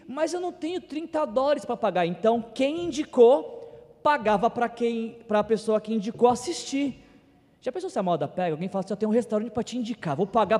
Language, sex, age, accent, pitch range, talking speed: Portuguese, male, 20-39, Brazilian, 195-245 Hz, 205 wpm